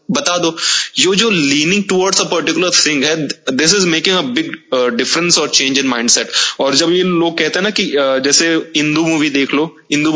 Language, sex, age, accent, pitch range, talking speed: Hindi, male, 20-39, native, 130-160 Hz, 200 wpm